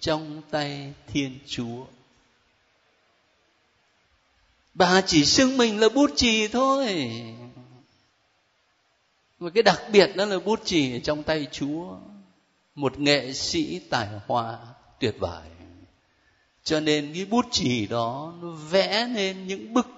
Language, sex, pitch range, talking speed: Vietnamese, male, 140-230 Hz, 125 wpm